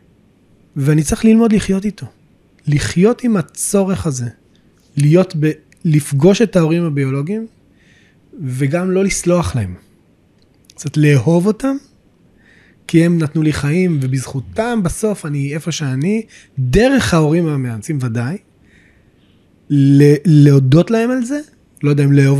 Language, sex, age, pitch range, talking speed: Hebrew, male, 20-39, 135-190 Hz, 120 wpm